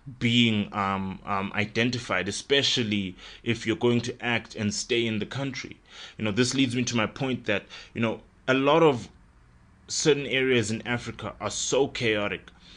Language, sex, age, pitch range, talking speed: English, male, 20-39, 100-120 Hz, 170 wpm